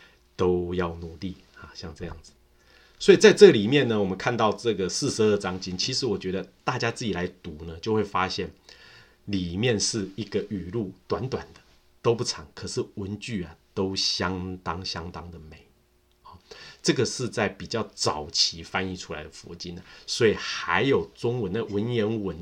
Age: 30-49